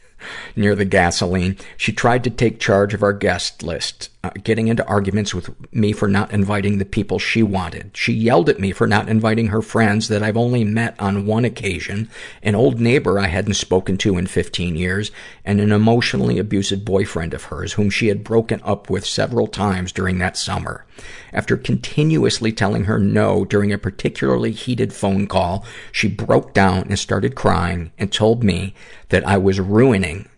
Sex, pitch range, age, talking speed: male, 95-110 Hz, 50-69, 185 wpm